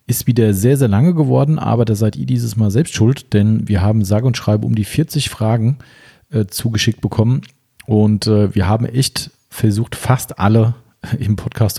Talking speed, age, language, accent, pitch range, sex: 190 wpm, 40-59, German, German, 105-125 Hz, male